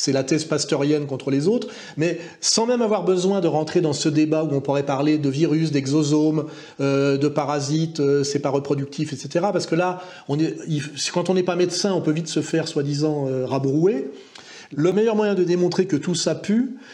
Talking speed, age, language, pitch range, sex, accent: 215 wpm, 40-59, French, 155-195 Hz, male, French